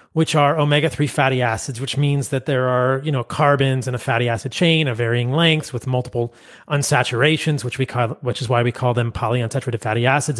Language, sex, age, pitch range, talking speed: English, male, 30-49, 125-155 Hz, 210 wpm